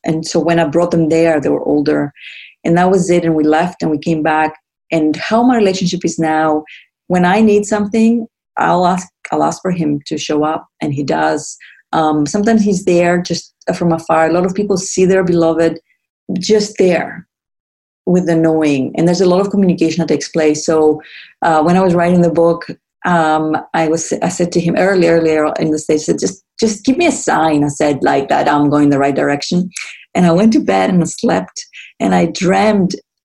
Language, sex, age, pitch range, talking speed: English, female, 30-49, 155-180 Hz, 215 wpm